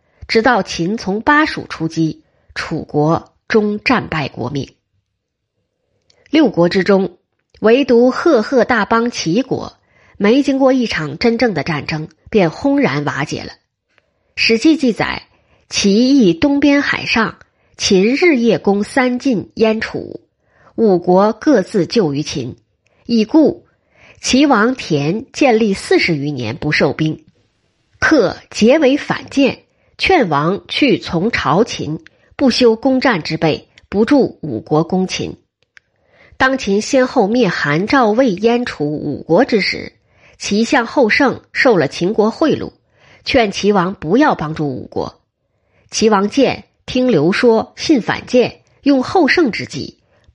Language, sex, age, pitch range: Chinese, female, 20-39, 170-255 Hz